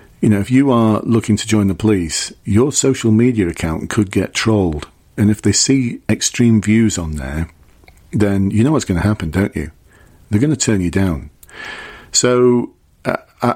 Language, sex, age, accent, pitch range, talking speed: English, male, 40-59, British, 90-110 Hz, 185 wpm